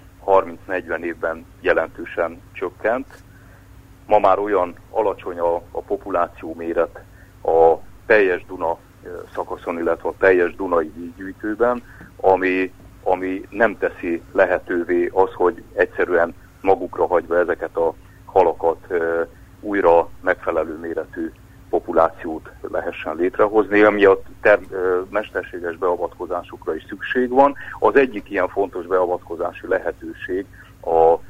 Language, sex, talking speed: Hungarian, male, 100 wpm